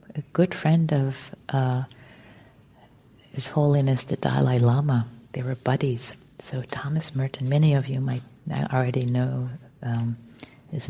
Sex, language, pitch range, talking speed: female, English, 130-165 Hz, 130 wpm